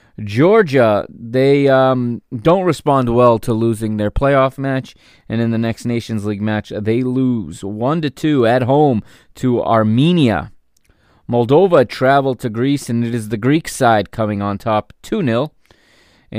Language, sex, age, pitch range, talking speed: English, male, 20-39, 110-135 Hz, 145 wpm